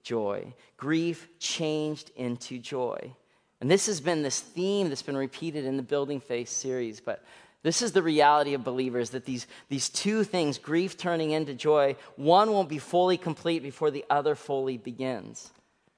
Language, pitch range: English, 140-180 Hz